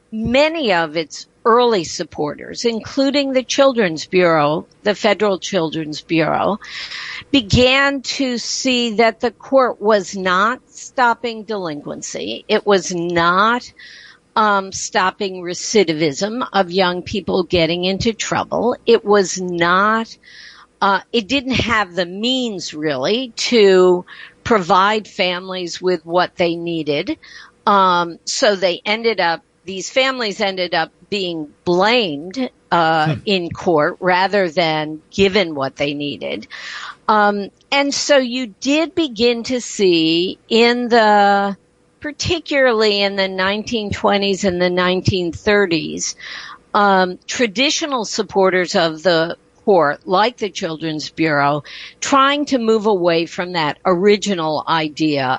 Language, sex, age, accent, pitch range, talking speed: English, female, 50-69, American, 170-230 Hz, 115 wpm